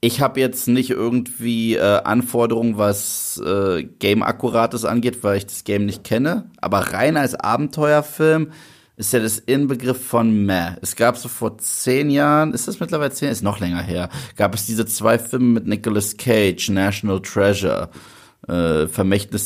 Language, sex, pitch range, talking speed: German, male, 105-130 Hz, 165 wpm